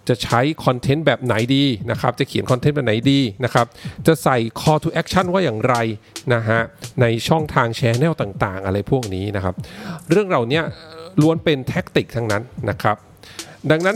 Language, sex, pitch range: English, male, 115-155 Hz